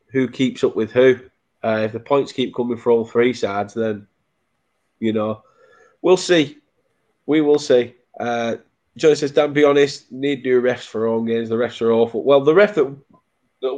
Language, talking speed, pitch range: English, 190 wpm, 115-150 Hz